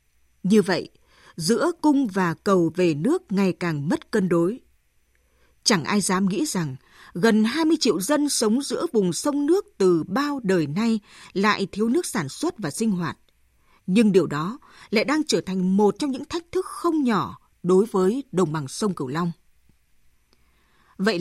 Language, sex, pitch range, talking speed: Vietnamese, female, 180-255 Hz, 175 wpm